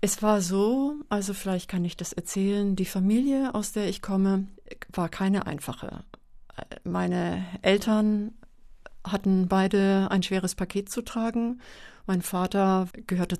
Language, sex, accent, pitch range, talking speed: German, female, German, 185-210 Hz, 135 wpm